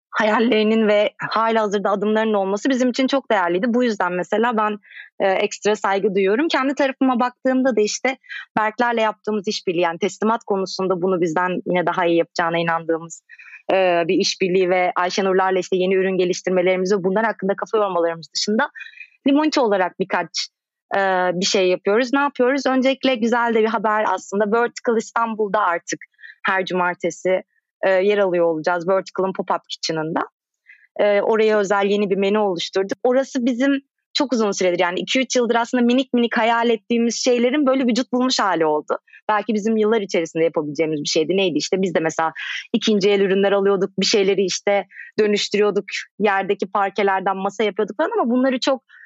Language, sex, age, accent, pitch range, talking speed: Turkish, female, 20-39, native, 190-240 Hz, 160 wpm